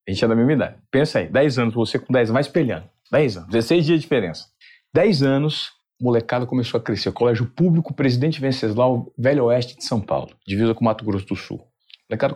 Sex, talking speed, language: male, 230 wpm, Portuguese